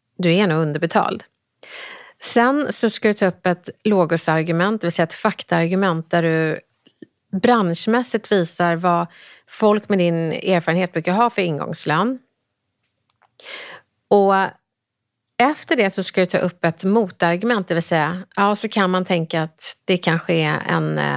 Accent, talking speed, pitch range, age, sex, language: native, 150 wpm, 170-210 Hz, 30-49, female, Swedish